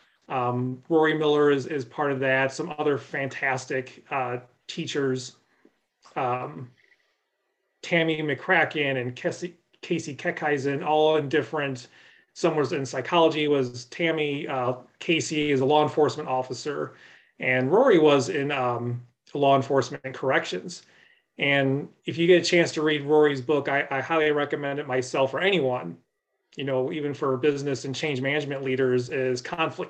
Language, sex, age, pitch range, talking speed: English, male, 30-49, 130-160 Hz, 150 wpm